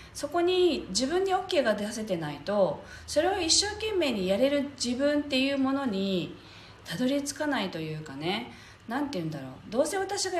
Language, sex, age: Japanese, female, 40-59